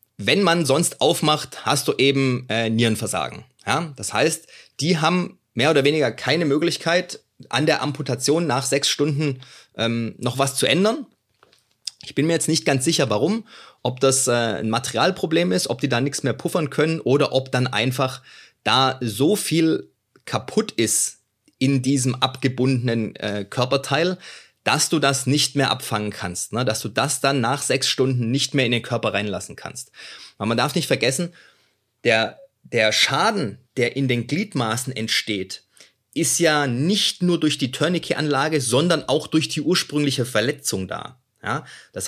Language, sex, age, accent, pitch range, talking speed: German, male, 30-49, German, 120-155 Hz, 165 wpm